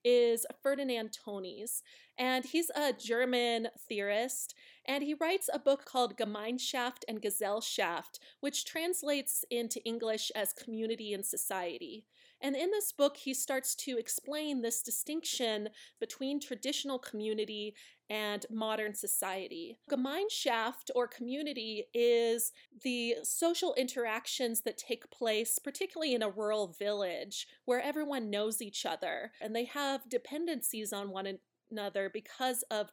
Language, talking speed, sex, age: English, 130 wpm, female, 30-49